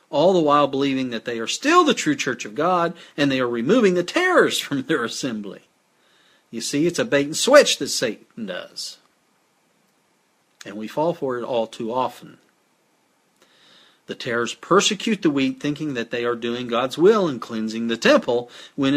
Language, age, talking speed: English, 40-59, 180 wpm